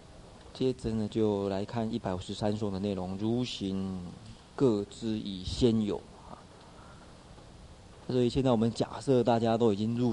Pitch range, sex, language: 95-120 Hz, male, Chinese